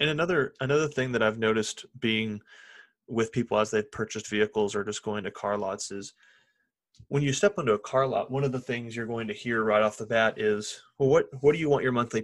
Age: 30-49